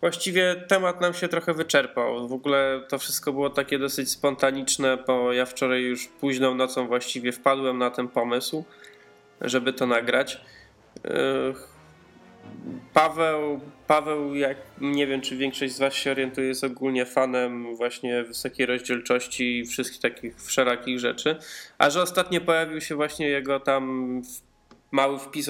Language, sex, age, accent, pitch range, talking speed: Polish, male, 20-39, native, 125-140 Hz, 140 wpm